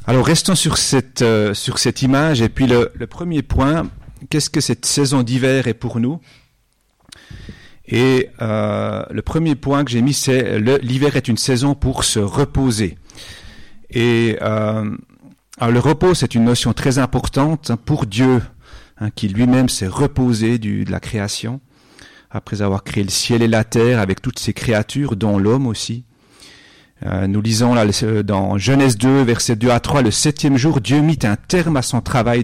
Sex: male